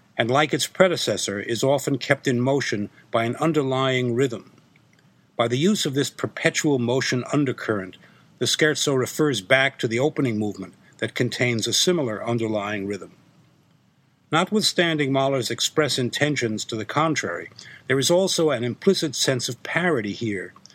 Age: 60-79